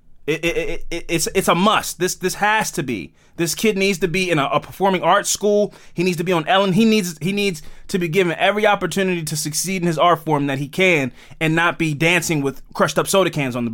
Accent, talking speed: American, 260 wpm